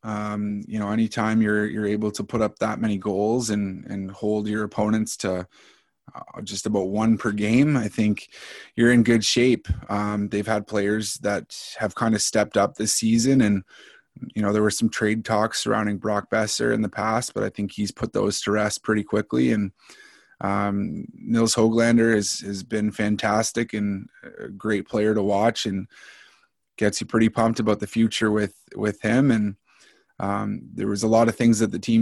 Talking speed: 195 wpm